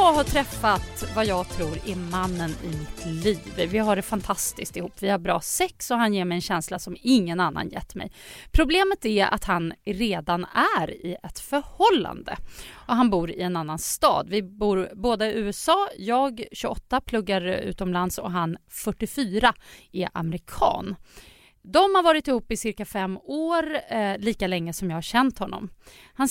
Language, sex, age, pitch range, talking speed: English, female, 30-49, 185-255 Hz, 180 wpm